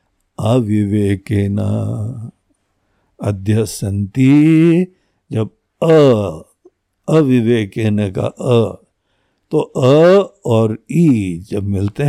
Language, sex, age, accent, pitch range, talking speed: Hindi, male, 60-79, native, 100-145 Hz, 65 wpm